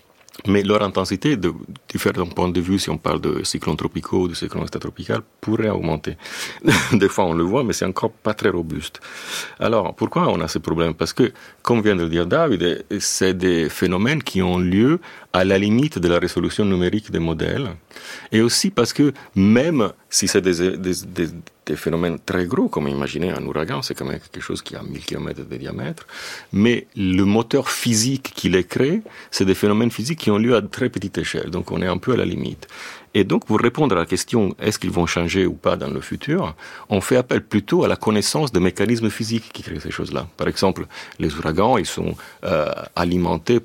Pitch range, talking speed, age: 85-105 Hz, 210 wpm, 40-59